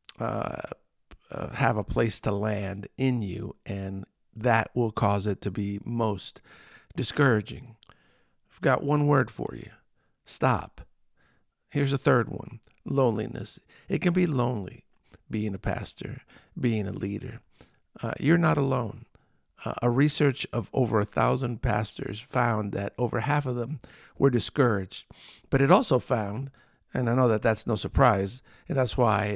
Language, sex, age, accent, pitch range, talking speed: English, male, 50-69, American, 105-130 Hz, 155 wpm